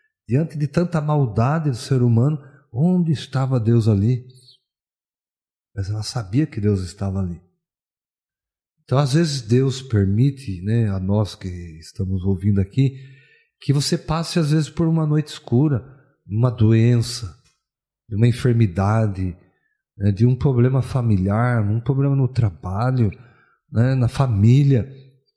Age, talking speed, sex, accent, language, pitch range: 50-69, 130 wpm, male, Brazilian, Portuguese, 105-135 Hz